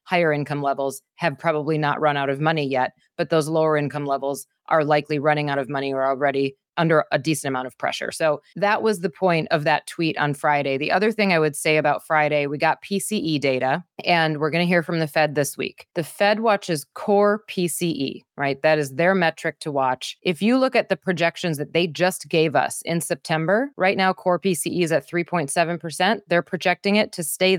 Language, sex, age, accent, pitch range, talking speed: English, female, 30-49, American, 150-185 Hz, 215 wpm